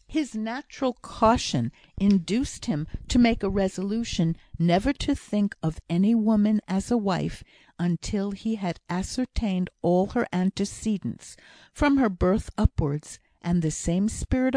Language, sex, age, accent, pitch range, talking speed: English, female, 50-69, American, 170-215 Hz, 135 wpm